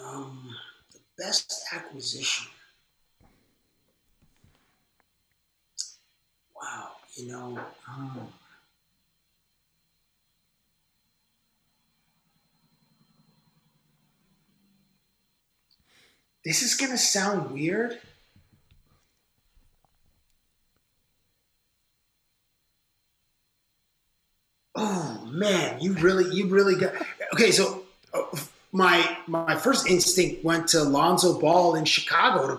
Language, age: English, 50-69